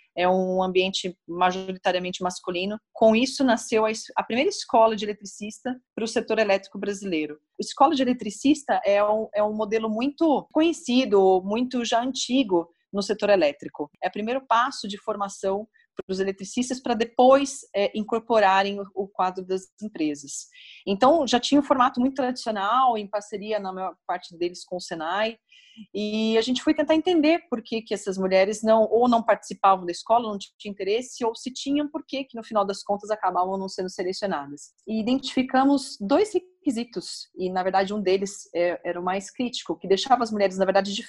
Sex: female